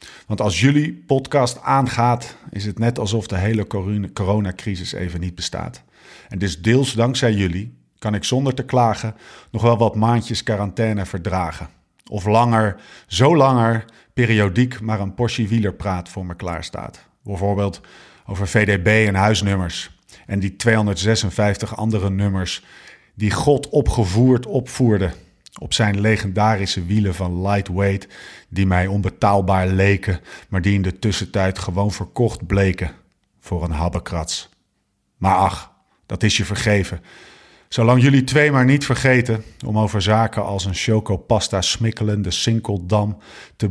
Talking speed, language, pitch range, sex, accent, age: 135 wpm, Dutch, 95-115 Hz, male, Dutch, 50-69